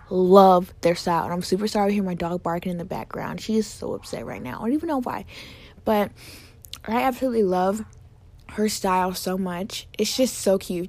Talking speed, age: 210 wpm, 20-39